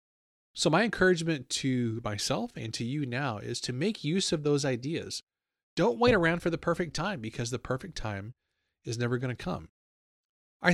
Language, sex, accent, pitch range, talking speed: English, male, American, 115-160 Hz, 185 wpm